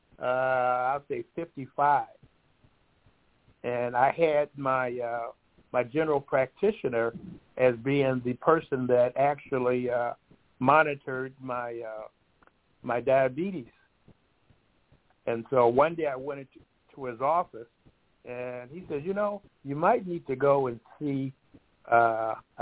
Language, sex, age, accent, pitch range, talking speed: English, male, 60-79, American, 125-165 Hz, 125 wpm